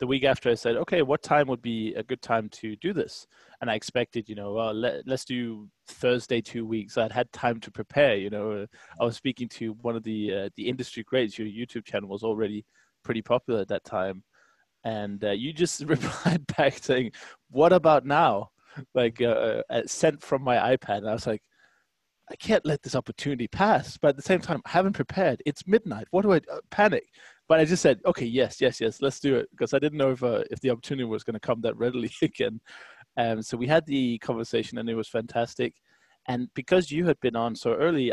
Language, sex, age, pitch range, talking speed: English, male, 20-39, 110-135 Hz, 230 wpm